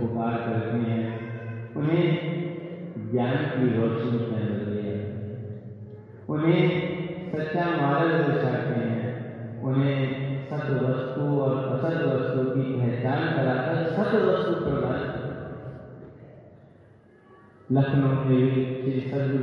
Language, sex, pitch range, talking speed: Hindi, male, 120-165 Hz, 45 wpm